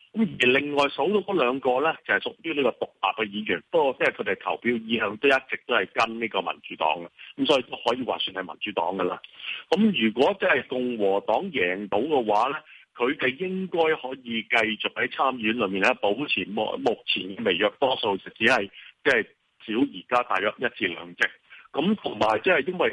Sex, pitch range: male, 105-145 Hz